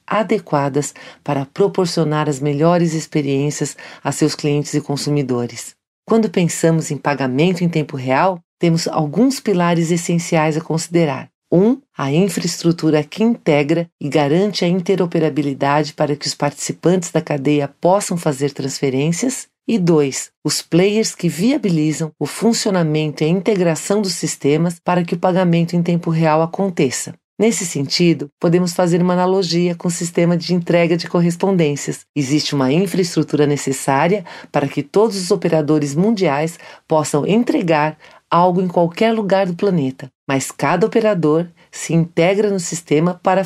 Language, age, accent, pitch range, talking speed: Portuguese, 40-59, Brazilian, 150-180 Hz, 140 wpm